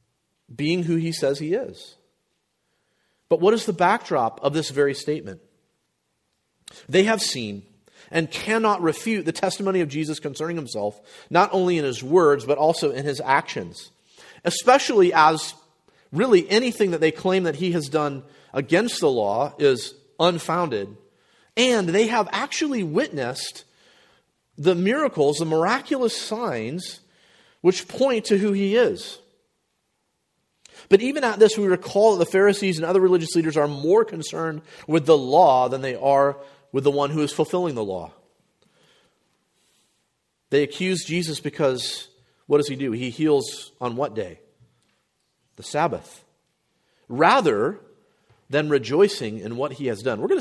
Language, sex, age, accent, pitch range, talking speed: English, male, 40-59, American, 135-190 Hz, 150 wpm